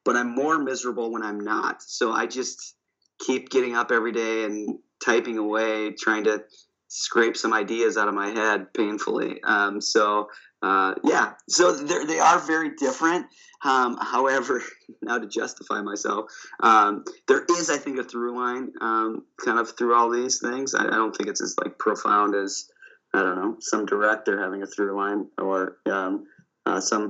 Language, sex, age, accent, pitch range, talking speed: English, male, 30-49, American, 105-130 Hz, 175 wpm